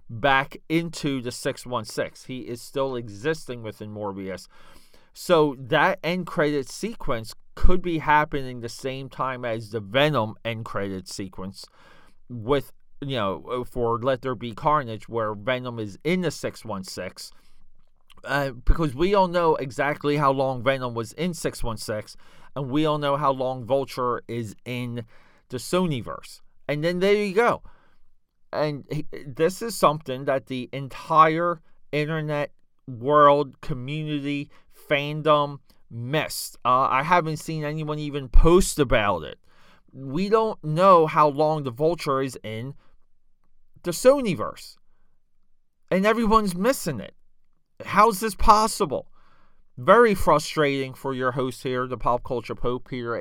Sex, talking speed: male, 135 wpm